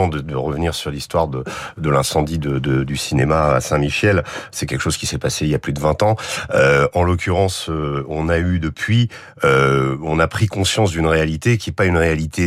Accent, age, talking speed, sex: French, 40-59, 225 wpm, male